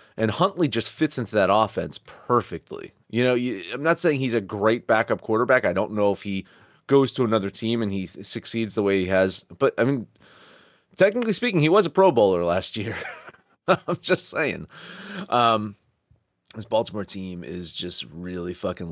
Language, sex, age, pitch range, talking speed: English, male, 30-49, 95-125 Hz, 185 wpm